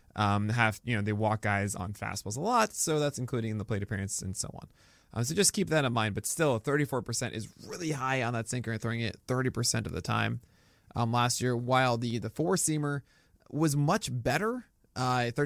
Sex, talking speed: male, 210 wpm